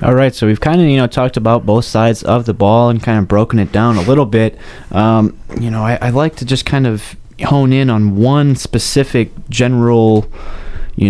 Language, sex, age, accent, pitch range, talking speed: English, male, 20-39, American, 100-120 Hz, 210 wpm